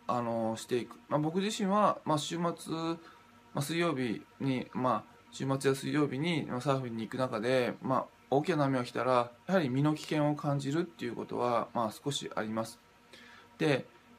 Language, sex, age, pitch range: Japanese, male, 20-39, 120-155 Hz